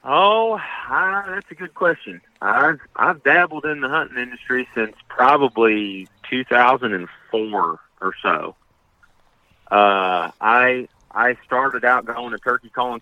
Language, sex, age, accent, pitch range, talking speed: English, male, 30-49, American, 95-115 Hz, 125 wpm